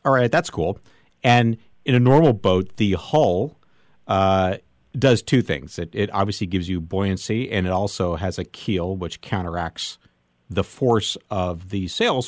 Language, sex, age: English, male, 50-69